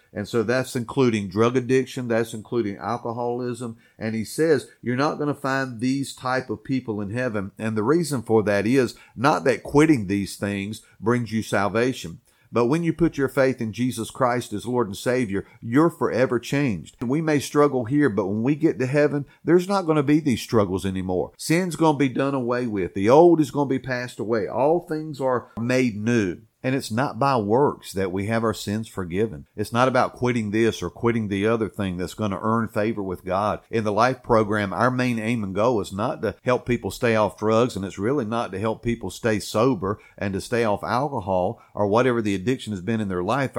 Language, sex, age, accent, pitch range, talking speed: English, male, 50-69, American, 105-130 Hz, 220 wpm